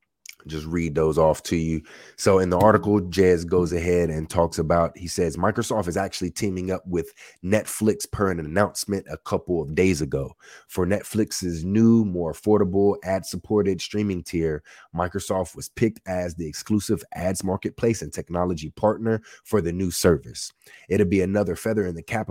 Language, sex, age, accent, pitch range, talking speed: English, male, 30-49, American, 85-105 Hz, 170 wpm